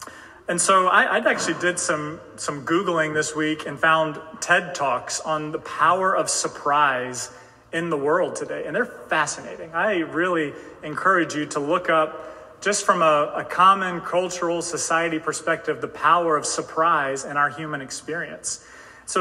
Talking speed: 160 wpm